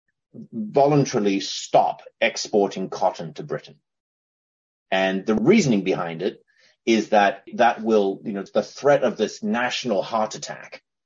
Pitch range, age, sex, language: 95-140 Hz, 30-49, male, English